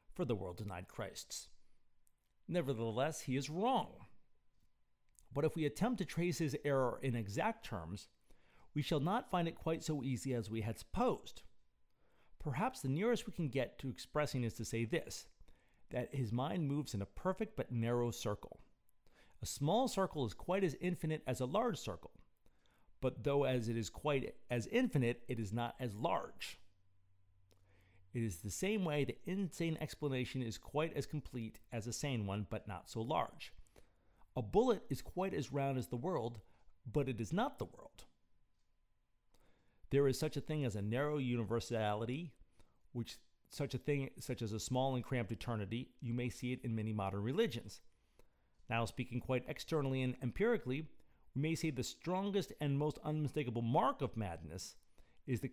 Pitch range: 115-150 Hz